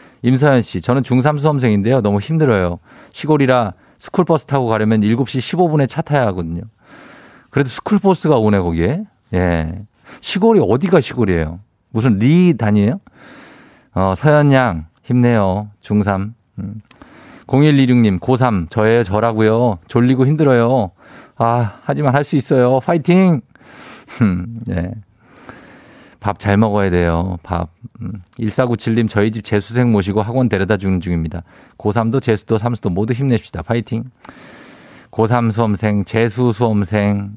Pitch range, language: 105-130 Hz, Korean